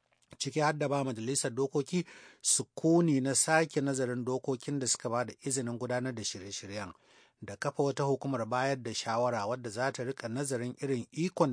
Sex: male